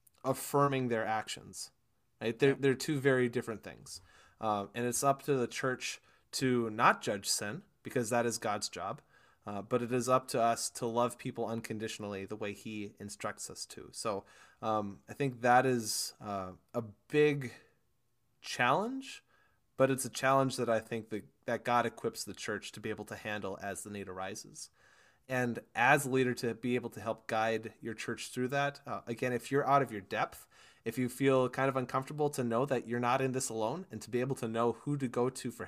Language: English